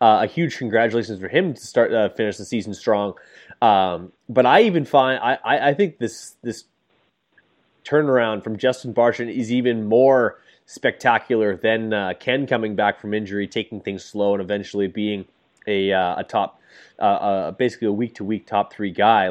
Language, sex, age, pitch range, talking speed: English, male, 20-39, 100-125 Hz, 185 wpm